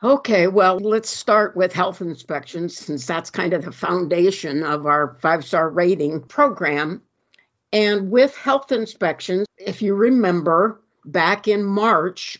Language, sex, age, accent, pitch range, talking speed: English, female, 60-79, American, 160-205 Hz, 135 wpm